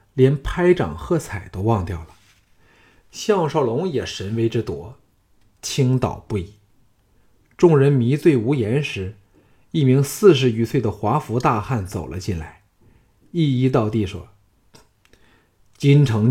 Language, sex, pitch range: Chinese, male, 100-130 Hz